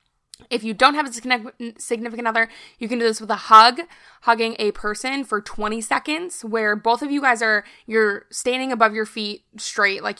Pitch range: 210-245 Hz